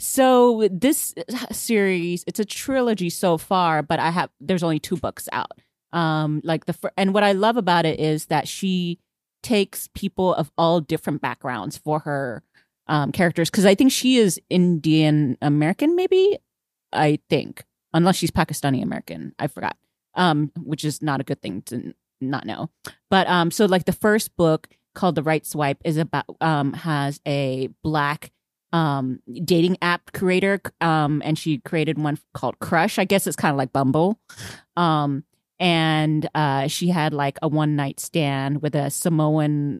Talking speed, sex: 170 wpm, female